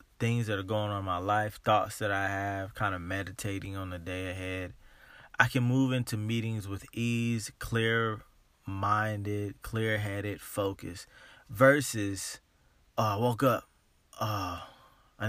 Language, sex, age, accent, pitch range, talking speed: English, male, 20-39, American, 105-125 Hz, 140 wpm